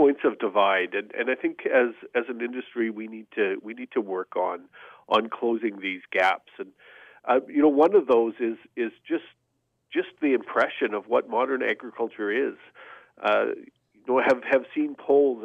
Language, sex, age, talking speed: English, male, 50-69, 190 wpm